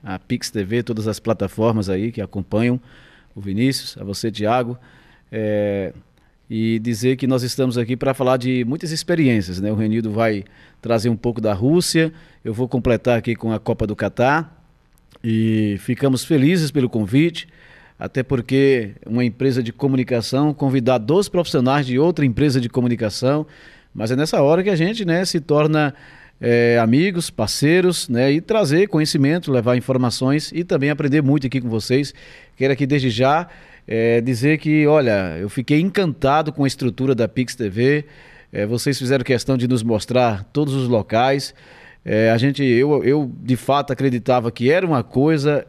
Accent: Brazilian